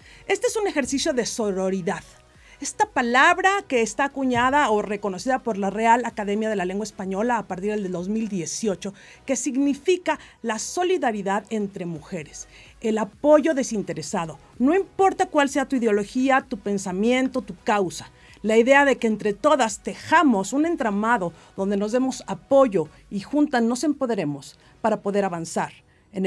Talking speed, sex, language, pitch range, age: 150 wpm, female, Spanish, 205-280 Hz, 50-69